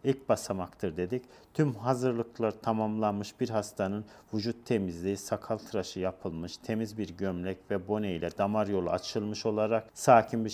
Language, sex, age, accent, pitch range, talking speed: Turkish, male, 40-59, native, 105-125 Hz, 140 wpm